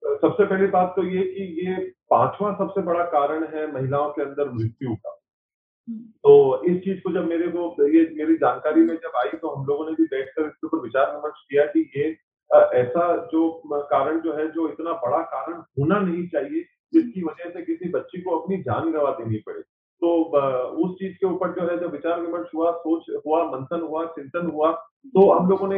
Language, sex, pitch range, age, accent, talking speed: Hindi, male, 155-190 Hz, 40-59, native, 205 wpm